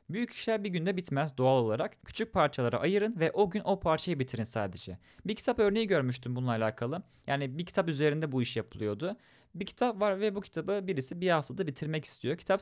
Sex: male